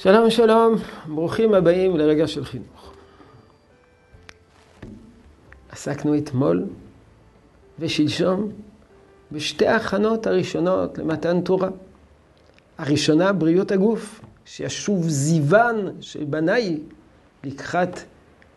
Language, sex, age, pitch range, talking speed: Hebrew, male, 50-69, 130-190 Hz, 75 wpm